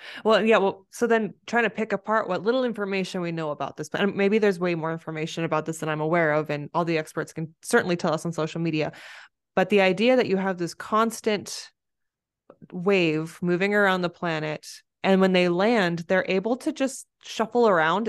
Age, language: 20-39, English